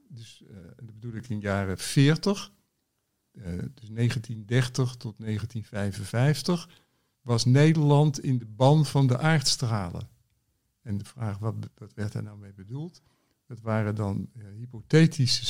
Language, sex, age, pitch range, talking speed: Dutch, male, 50-69, 110-145 Hz, 145 wpm